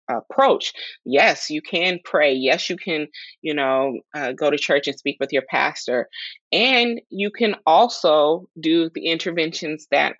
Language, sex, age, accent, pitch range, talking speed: English, female, 20-39, American, 135-155 Hz, 160 wpm